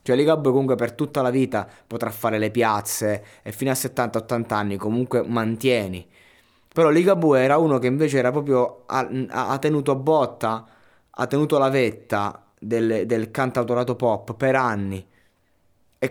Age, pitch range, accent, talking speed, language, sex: 20-39, 110-135 Hz, native, 155 wpm, Italian, male